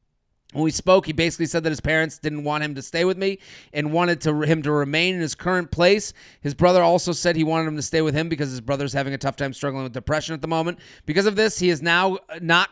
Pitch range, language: 145-175 Hz, English